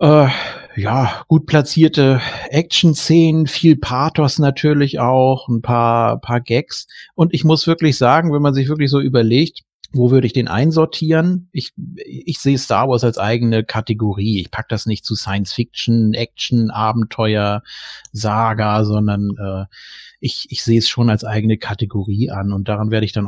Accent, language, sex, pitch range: German, German, male, 110-140 Hz